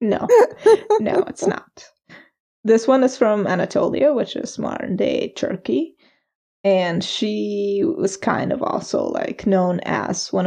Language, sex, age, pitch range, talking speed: English, female, 20-39, 190-255 Hz, 130 wpm